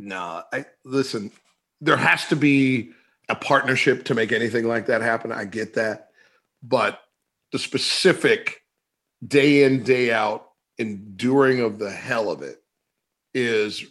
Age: 40-59